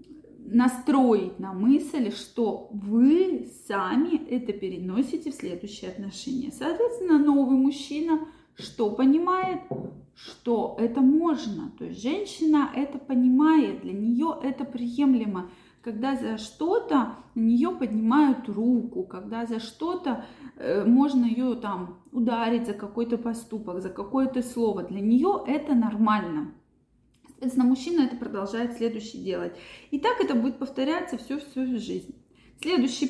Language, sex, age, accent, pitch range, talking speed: Russian, female, 20-39, native, 225-290 Hz, 125 wpm